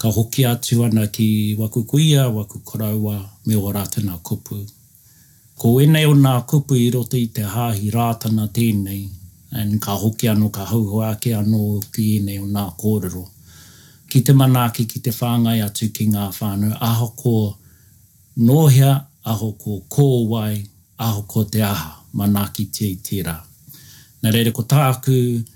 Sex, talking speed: male, 145 wpm